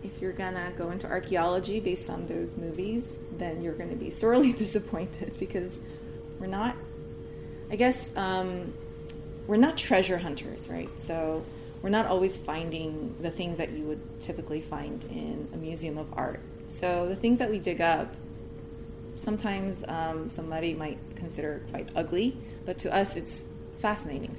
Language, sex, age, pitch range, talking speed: English, female, 20-39, 160-190 Hz, 155 wpm